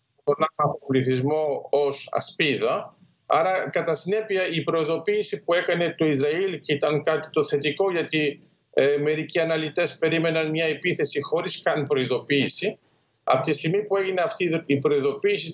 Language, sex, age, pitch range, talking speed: Greek, male, 50-69, 150-200 Hz, 135 wpm